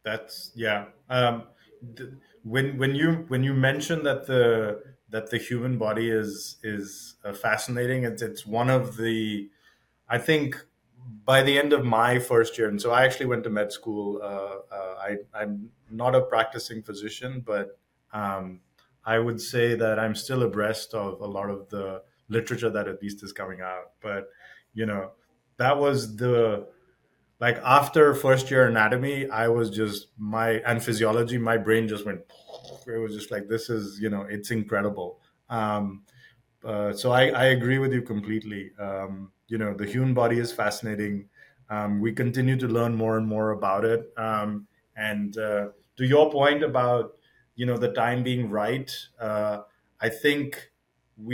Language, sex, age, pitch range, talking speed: English, male, 30-49, 105-125 Hz, 170 wpm